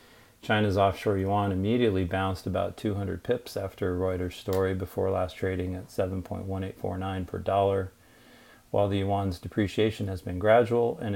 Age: 40-59